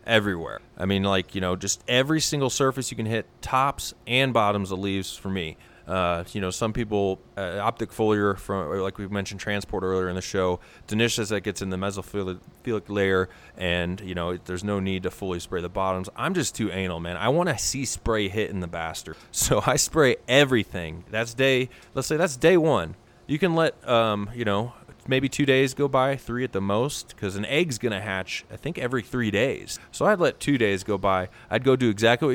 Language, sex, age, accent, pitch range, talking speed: English, male, 20-39, American, 95-125 Hz, 220 wpm